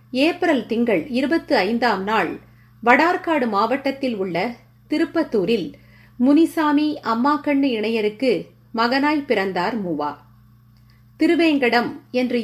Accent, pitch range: native, 190-275 Hz